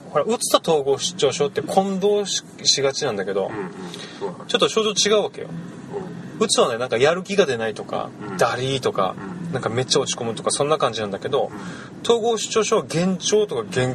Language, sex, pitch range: Japanese, male, 115-190 Hz